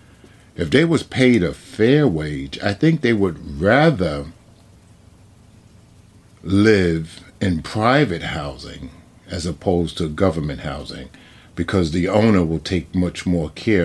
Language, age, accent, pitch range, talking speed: English, 50-69, American, 85-100 Hz, 125 wpm